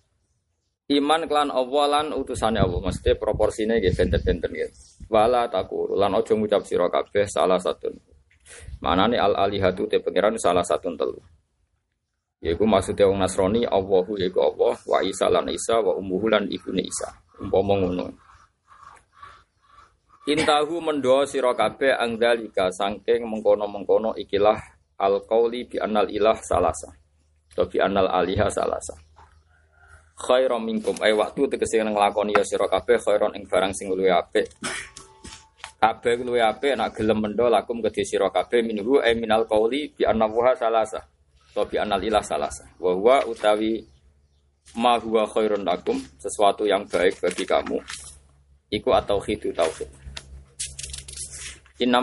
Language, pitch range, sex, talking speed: Indonesian, 90-135 Hz, male, 130 wpm